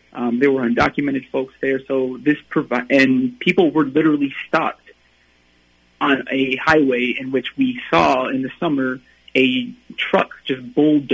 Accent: American